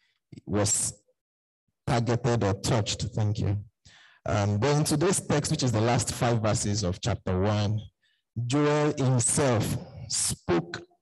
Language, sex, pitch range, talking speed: English, male, 110-135 Hz, 125 wpm